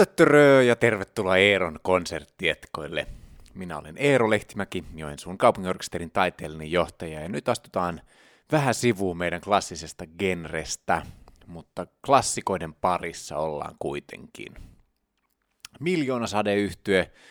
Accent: native